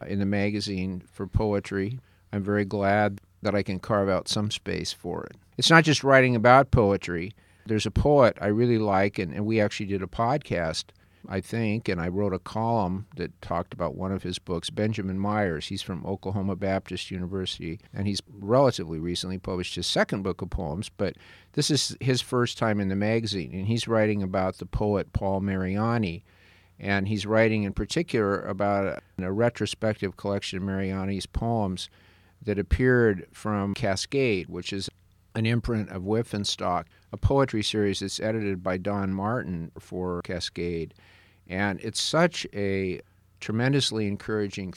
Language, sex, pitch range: English, male, 95-110 Hz